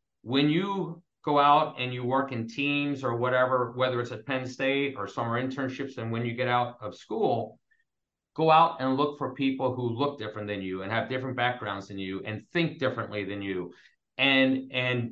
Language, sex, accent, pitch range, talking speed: English, male, American, 120-145 Hz, 200 wpm